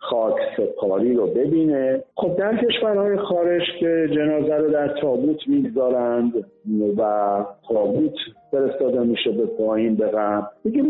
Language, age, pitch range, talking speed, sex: Persian, 50-69, 125-200 Hz, 120 wpm, male